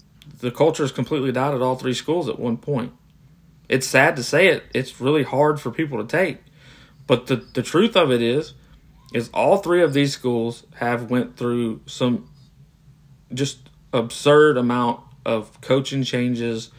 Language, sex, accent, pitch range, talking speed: English, male, American, 125-150 Hz, 170 wpm